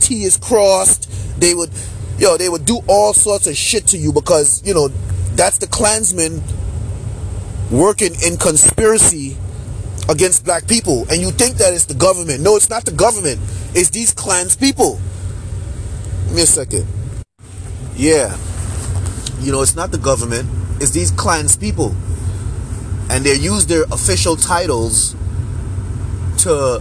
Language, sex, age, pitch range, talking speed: English, male, 30-49, 95-120 Hz, 145 wpm